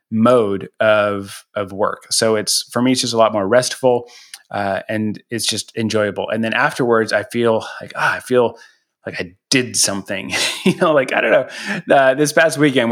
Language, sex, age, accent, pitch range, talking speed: English, male, 30-49, American, 105-125 Hz, 195 wpm